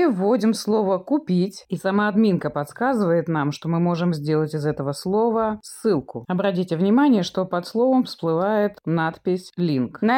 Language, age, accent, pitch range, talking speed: Russian, 20-39, native, 165-230 Hz, 145 wpm